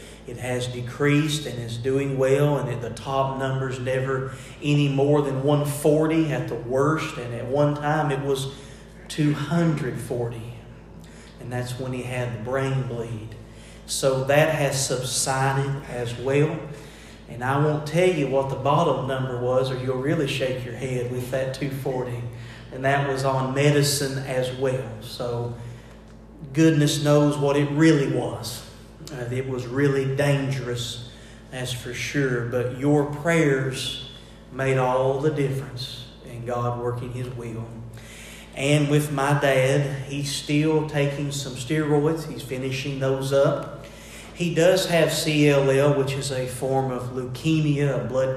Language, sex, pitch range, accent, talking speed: English, male, 125-145 Hz, American, 145 wpm